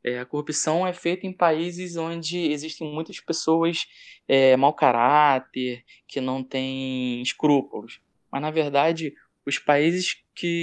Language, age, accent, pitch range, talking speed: Portuguese, 20-39, Brazilian, 130-165 Hz, 125 wpm